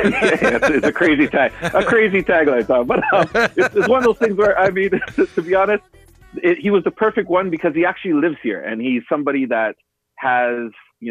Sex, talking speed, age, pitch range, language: male, 215 wpm, 30-49, 115-165 Hz, English